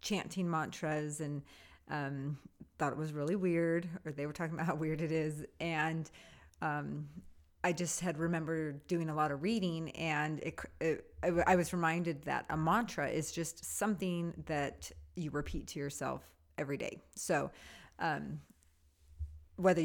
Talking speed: 150 wpm